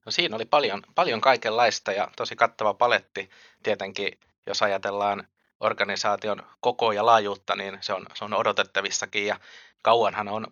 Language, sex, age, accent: Finnish, male, 20-39, native